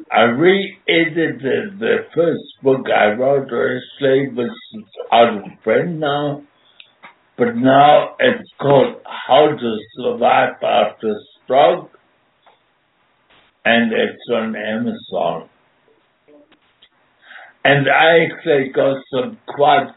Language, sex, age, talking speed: English, male, 60-79, 100 wpm